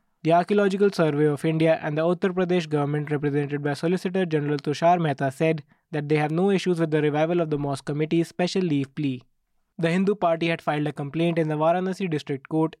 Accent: Indian